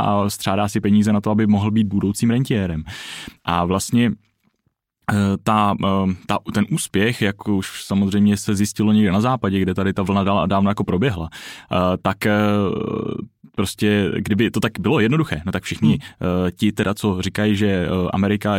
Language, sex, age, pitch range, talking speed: Czech, male, 20-39, 95-110 Hz, 140 wpm